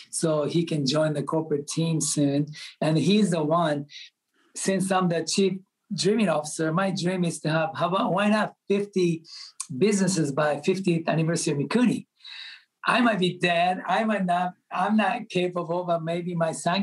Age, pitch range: 50-69, 155-185 Hz